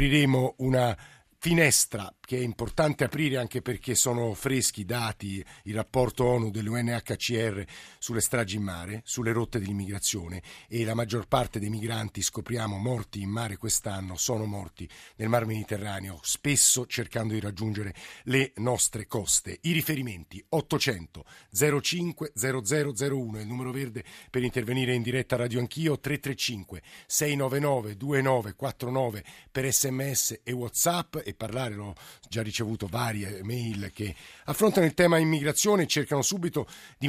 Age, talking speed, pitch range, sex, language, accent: 50-69, 135 wpm, 110-140 Hz, male, Italian, native